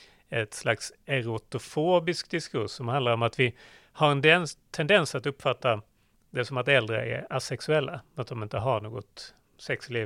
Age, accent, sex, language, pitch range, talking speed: 30-49, native, male, Swedish, 120-155 Hz, 155 wpm